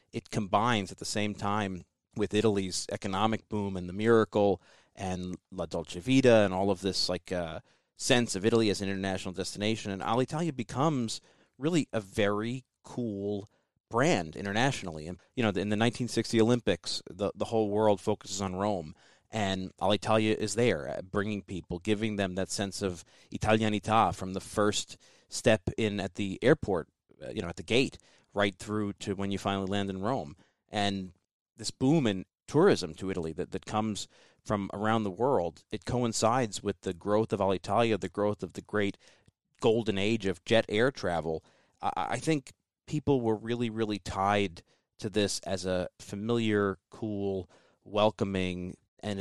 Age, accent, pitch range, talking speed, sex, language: 30-49, American, 95-110 Hz, 165 wpm, male, English